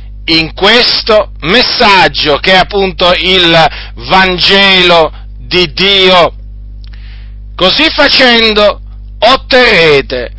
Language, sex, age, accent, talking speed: Italian, male, 40-59, native, 75 wpm